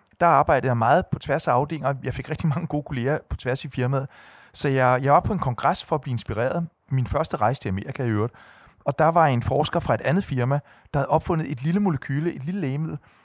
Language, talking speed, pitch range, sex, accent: Danish, 245 wpm, 130-160 Hz, male, native